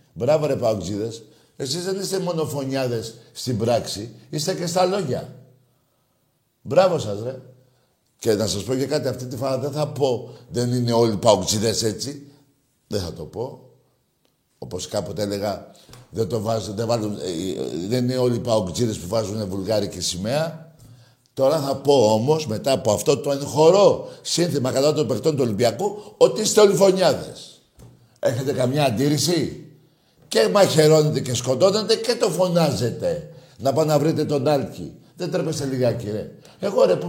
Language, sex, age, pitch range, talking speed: Greek, male, 60-79, 120-160 Hz, 150 wpm